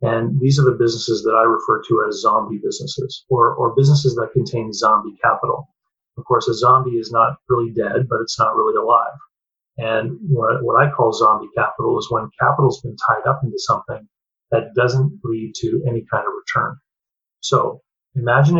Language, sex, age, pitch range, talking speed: English, male, 30-49, 120-145 Hz, 185 wpm